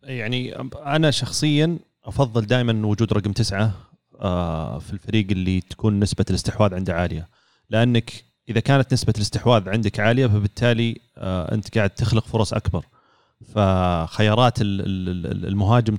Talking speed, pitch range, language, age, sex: 115 wpm, 95-115 Hz, Arabic, 30-49, male